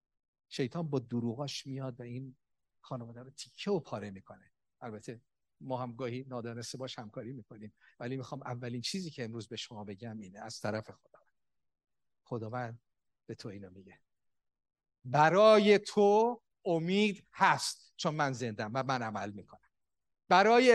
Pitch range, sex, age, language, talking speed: 120-170 Hz, male, 50-69, Persian, 140 wpm